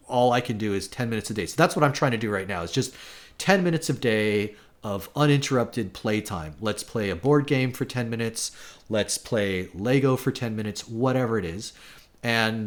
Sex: male